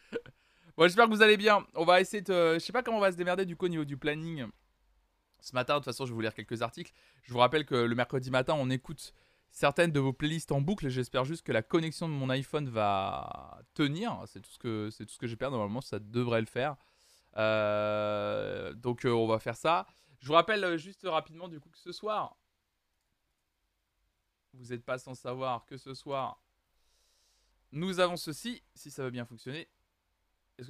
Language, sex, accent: French, male, French